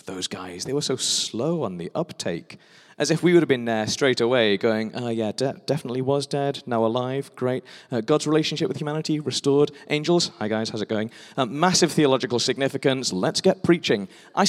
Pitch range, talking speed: 110-155 Hz, 195 wpm